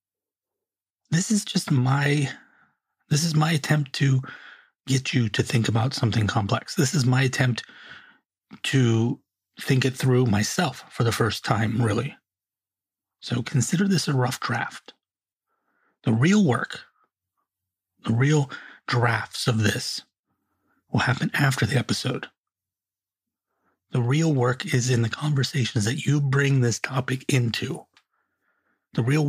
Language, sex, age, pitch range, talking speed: English, male, 30-49, 120-145 Hz, 130 wpm